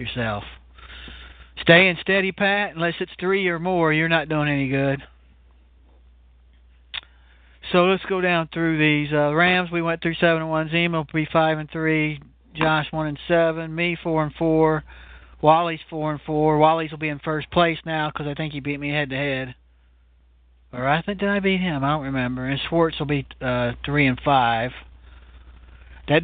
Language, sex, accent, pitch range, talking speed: English, male, American, 125-170 Hz, 190 wpm